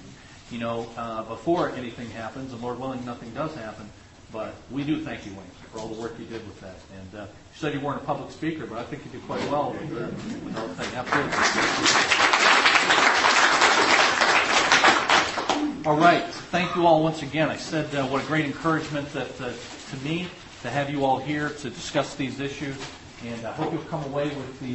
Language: English